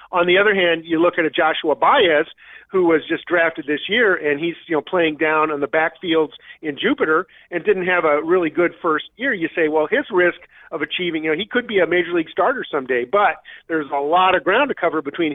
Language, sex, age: English, male, 50-69